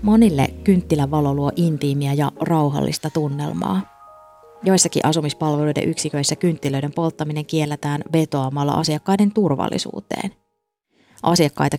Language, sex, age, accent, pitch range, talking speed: Finnish, female, 20-39, native, 140-165 Hz, 85 wpm